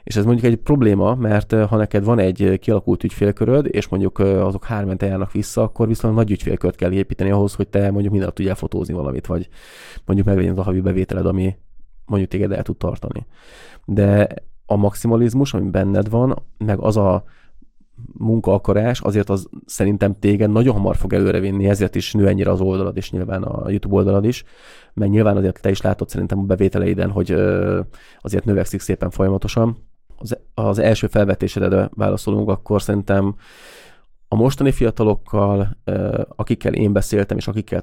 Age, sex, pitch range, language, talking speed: 20-39, male, 95-110 Hz, Hungarian, 165 wpm